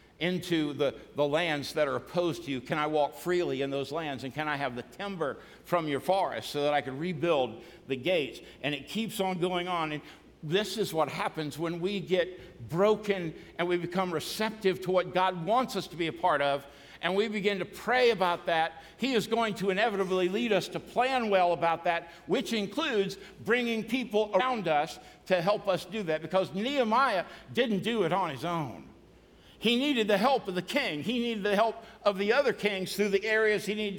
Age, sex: 60-79, male